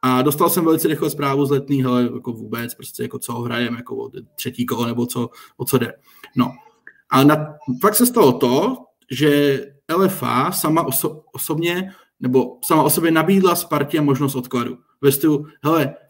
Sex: male